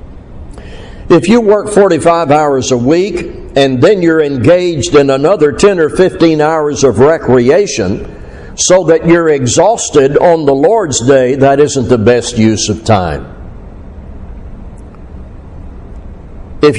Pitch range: 115-165 Hz